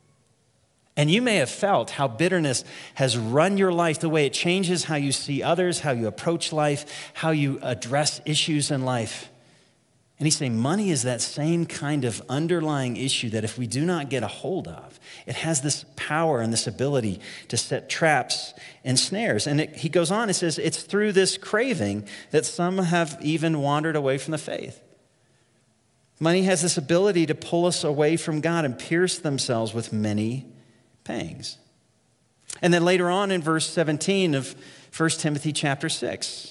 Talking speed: 180 wpm